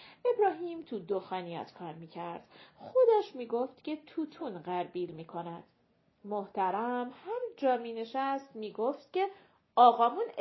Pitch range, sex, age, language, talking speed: 205-285 Hz, female, 40-59, Persian, 110 wpm